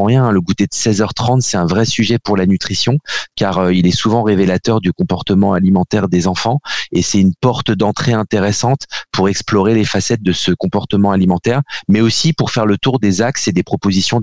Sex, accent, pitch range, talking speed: male, French, 100-125 Hz, 205 wpm